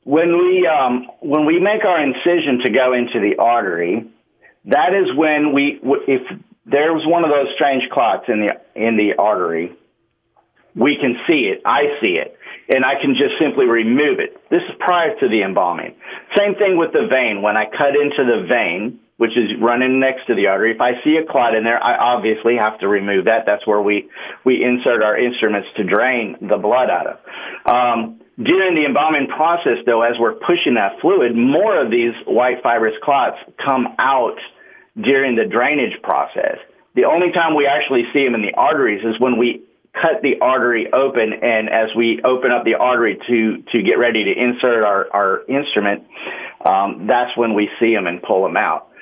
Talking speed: 195 wpm